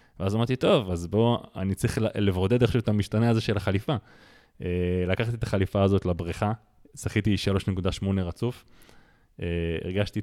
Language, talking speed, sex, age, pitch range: Hebrew, 135 wpm, male, 20-39, 90-110 Hz